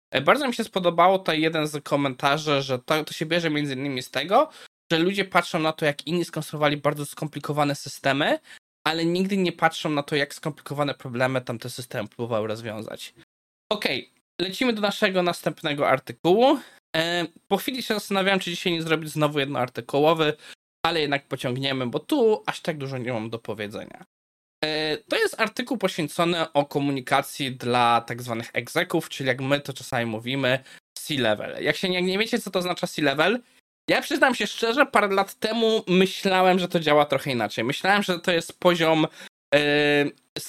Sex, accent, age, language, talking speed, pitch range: male, native, 20-39, Polish, 170 wpm, 130-175 Hz